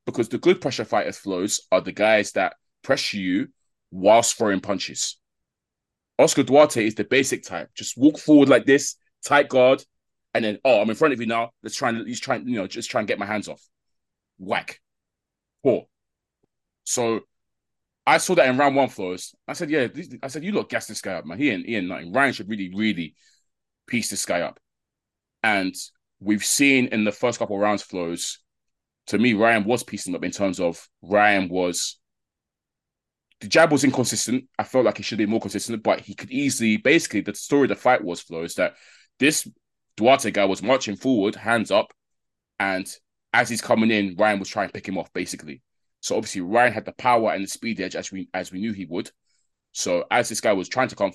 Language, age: English, 20-39